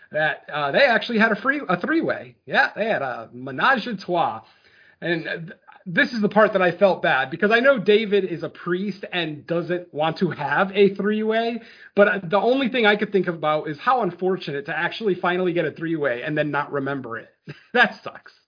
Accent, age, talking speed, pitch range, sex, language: American, 30-49, 210 wpm, 155-200 Hz, male, English